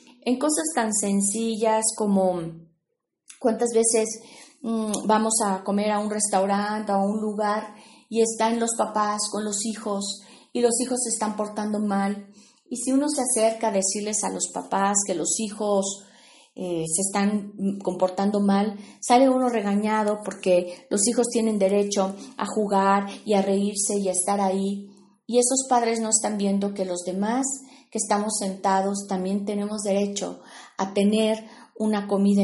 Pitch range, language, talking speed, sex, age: 195-225 Hz, Spanish, 155 wpm, female, 30-49